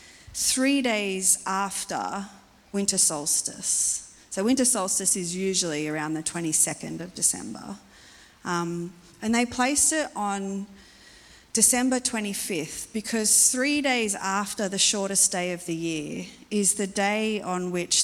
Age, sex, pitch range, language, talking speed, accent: 30-49, female, 175-240 Hz, English, 125 wpm, Australian